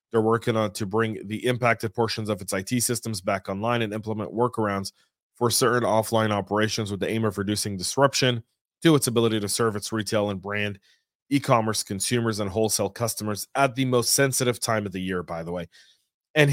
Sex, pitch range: male, 105-130 Hz